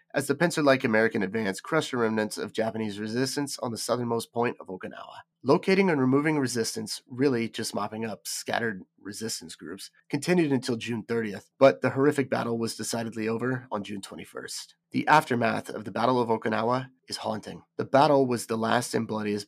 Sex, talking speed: male, 180 wpm